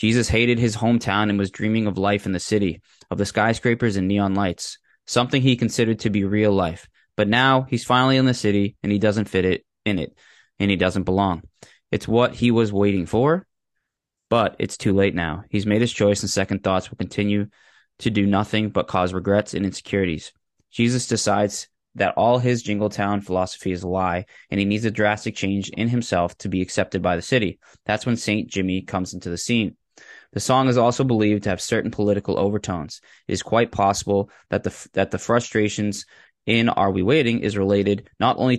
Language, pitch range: English, 95-115 Hz